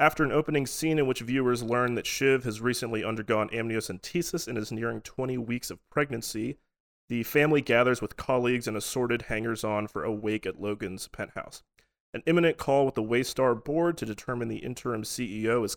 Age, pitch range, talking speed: 30-49, 110-130 Hz, 185 wpm